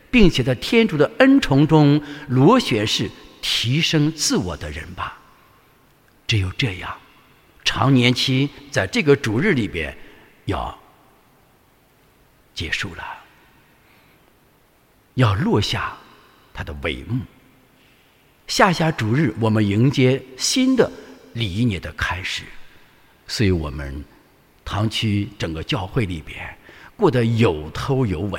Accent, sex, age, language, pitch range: Chinese, male, 50-69, English, 100-140 Hz